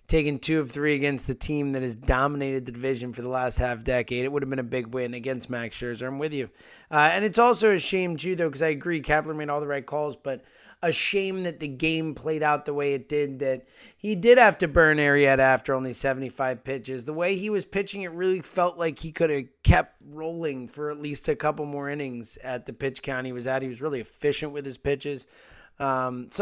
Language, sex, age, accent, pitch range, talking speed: English, male, 20-39, American, 130-170 Hz, 245 wpm